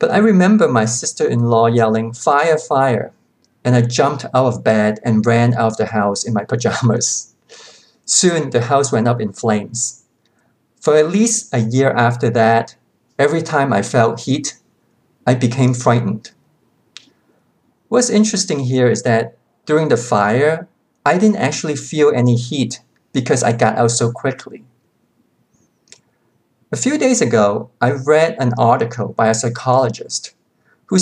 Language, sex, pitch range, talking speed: English, male, 115-155 Hz, 150 wpm